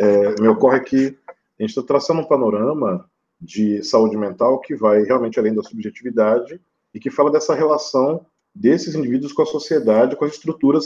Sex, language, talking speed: male, Portuguese, 175 wpm